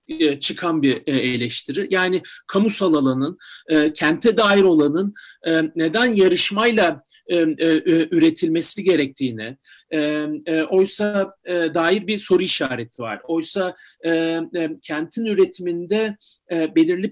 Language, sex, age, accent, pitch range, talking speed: Turkish, male, 50-69, native, 175-225 Hz, 80 wpm